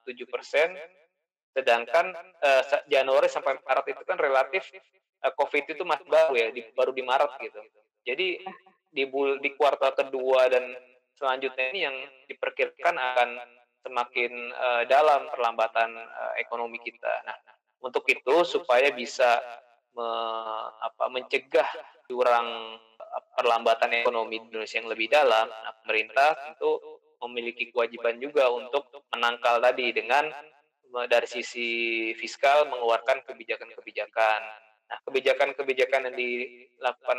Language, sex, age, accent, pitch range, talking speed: Indonesian, male, 20-39, native, 120-190 Hz, 120 wpm